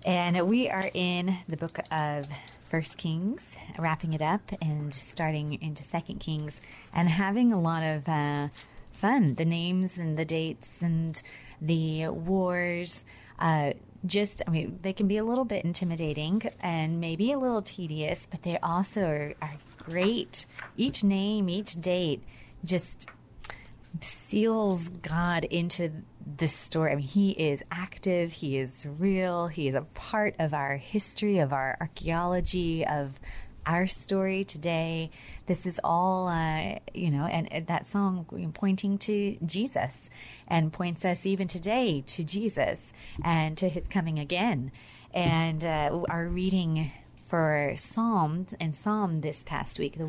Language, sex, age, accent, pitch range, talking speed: English, female, 30-49, American, 155-185 Hz, 145 wpm